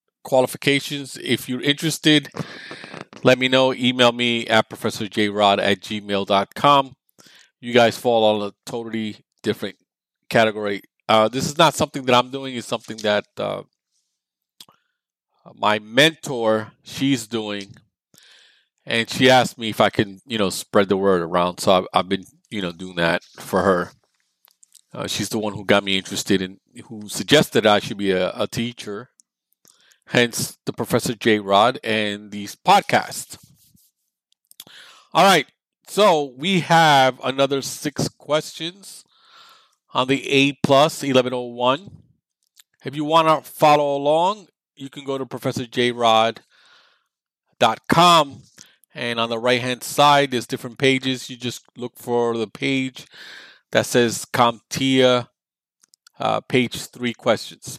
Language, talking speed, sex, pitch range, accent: English, 135 wpm, male, 110-135 Hz, American